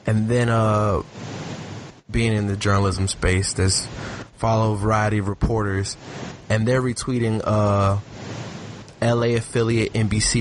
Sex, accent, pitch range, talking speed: male, American, 100-130 Hz, 120 wpm